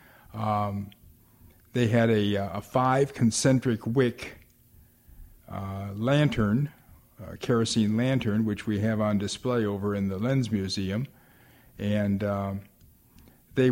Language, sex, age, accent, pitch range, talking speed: English, male, 50-69, American, 100-120 Hz, 105 wpm